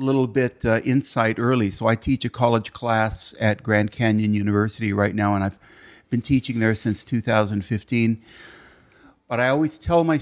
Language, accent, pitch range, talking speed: English, American, 115-140 Hz, 170 wpm